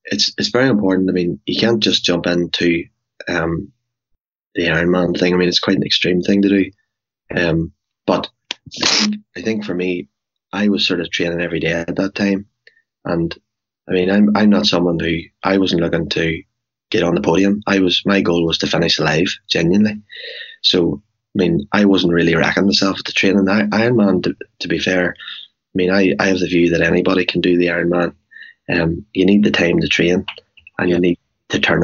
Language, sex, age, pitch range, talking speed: English, male, 20-39, 85-100 Hz, 205 wpm